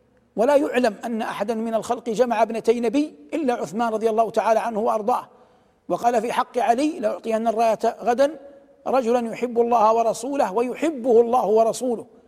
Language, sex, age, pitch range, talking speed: Arabic, male, 60-79, 225-265 Hz, 145 wpm